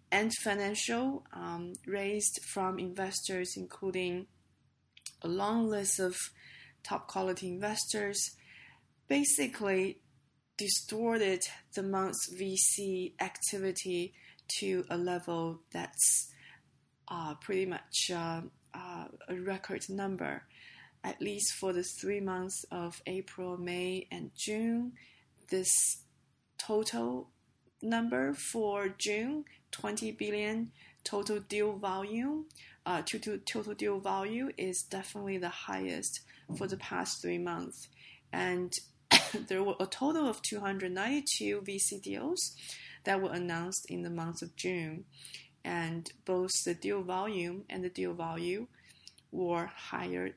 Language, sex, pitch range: English, female, 175-205 Hz